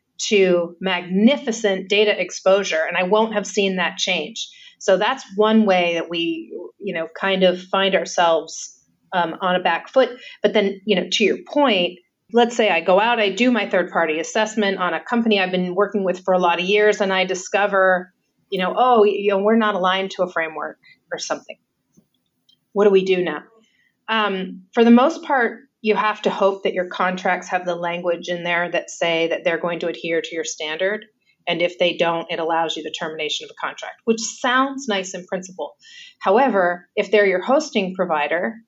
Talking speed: 200 wpm